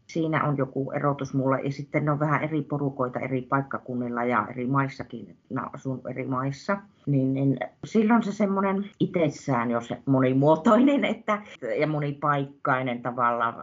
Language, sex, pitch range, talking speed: Finnish, female, 125-165 Hz, 130 wpm